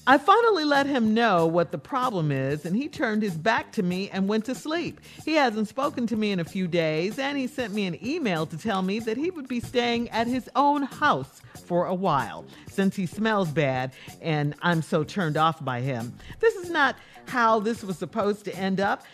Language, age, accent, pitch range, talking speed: English, 50-69, American, 185-270 Hz, 225 wpm